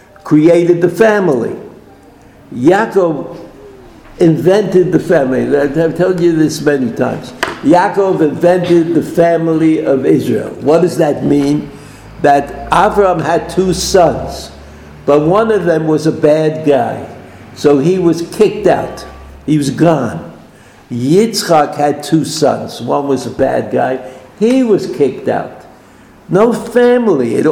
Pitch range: 150-185 Hz